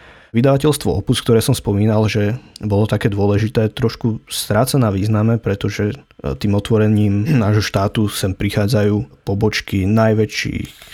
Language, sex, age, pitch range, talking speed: Slovak, male, 20-39, 100-115 Hz, 120 wpm